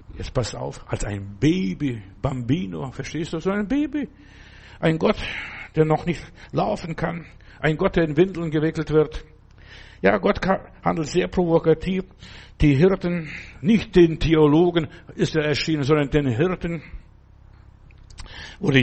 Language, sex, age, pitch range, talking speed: German, male, 60-79, 125-165 Hz, 140 wpm